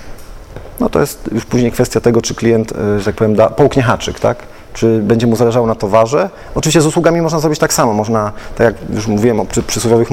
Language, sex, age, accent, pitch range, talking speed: Polish, male, 40-59, native, 105-145 Hz, 215 wpm